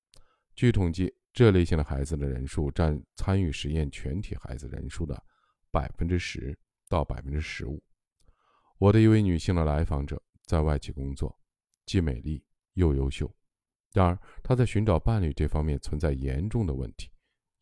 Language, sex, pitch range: Chinese, male, 70-90 Hz